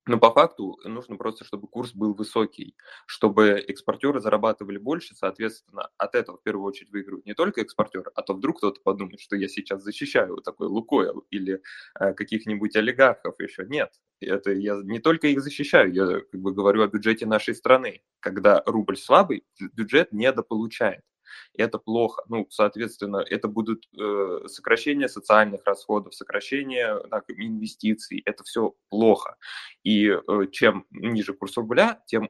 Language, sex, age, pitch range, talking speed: Russian, male, 20-39, 105-130 Hz, 155 wpm